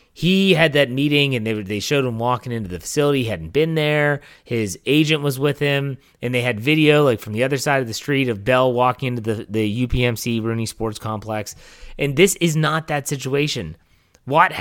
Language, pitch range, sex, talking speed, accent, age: English, 115-155 Hz, male, 210 wpm, American, 30-49